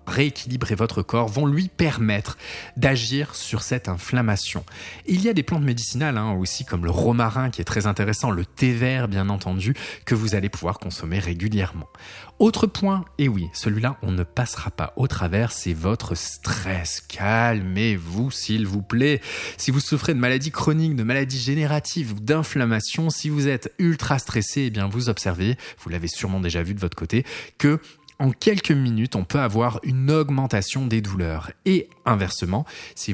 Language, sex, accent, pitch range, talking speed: French, male, French, 100-135 Hz, 170 wpm